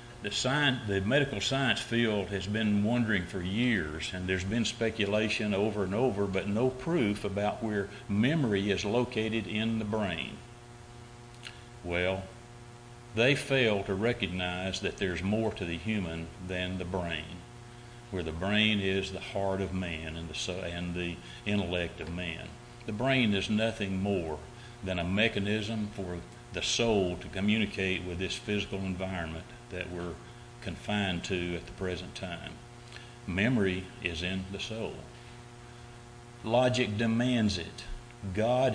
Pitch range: 95-120 Hz